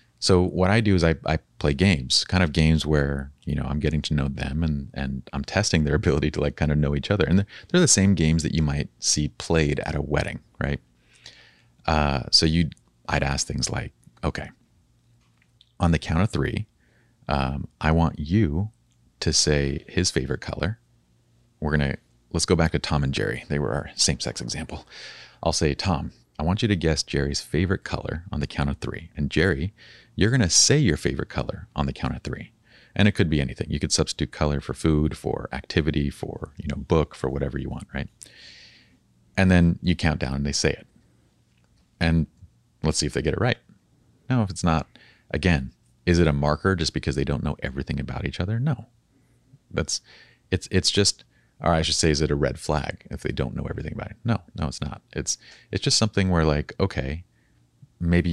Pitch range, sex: 70-90 Hz, male